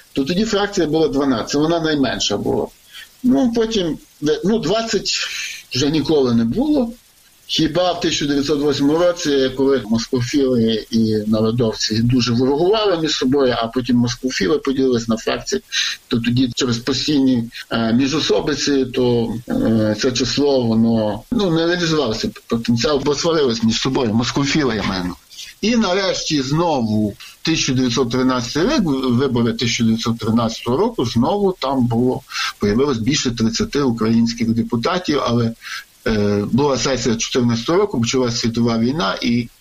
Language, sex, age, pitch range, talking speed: Ukrainian, male, 50-69, 115-160 Hz, 120 wpm